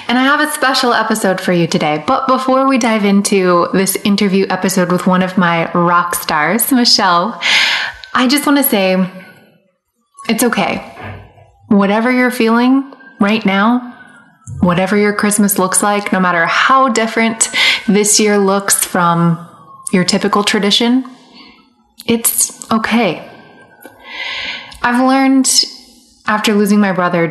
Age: 20-39